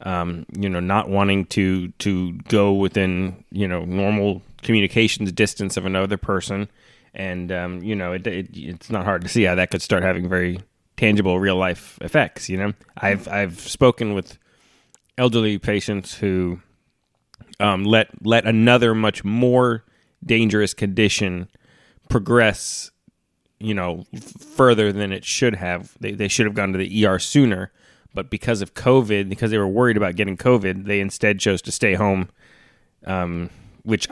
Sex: male